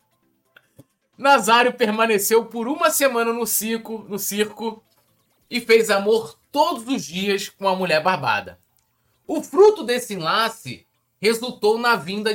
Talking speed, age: 120 wpm, 20-39